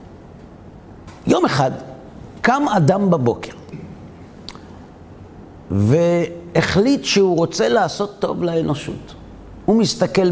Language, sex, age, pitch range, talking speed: Hebrew, male, 50-69, 130-200 Hz, 75 wpm